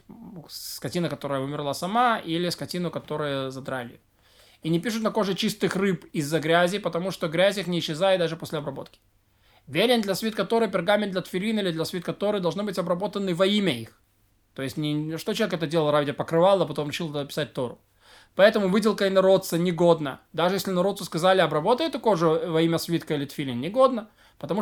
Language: Russian